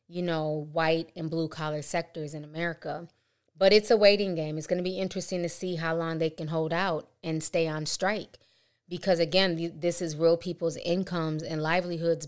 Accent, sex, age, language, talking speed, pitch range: American, female, 20-39, English, 195 wpm, 160-185 Hz